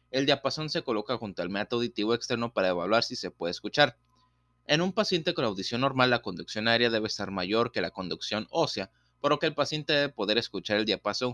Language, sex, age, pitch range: Spanish, male, 30-49, 95-135 Hz